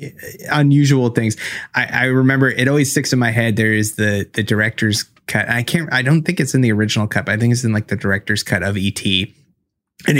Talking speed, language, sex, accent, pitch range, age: 225 wpm, English, male, American, 100-130 Hz, 20-39